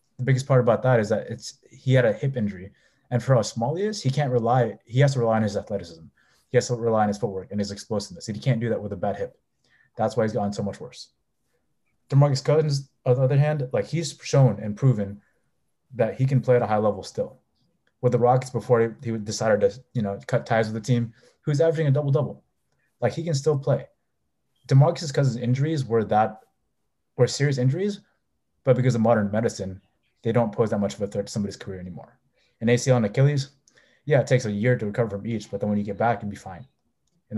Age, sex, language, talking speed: 20-39, male, English, 240 wpm